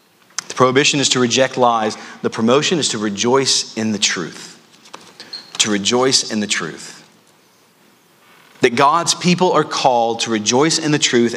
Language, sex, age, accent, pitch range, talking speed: English, male, 30-49, American, 125-160 Hz, 150 wpm